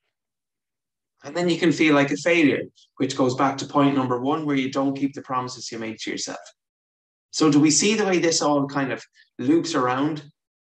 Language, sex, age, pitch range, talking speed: English, male, 20-39, 130-160 Hz, 210 wpm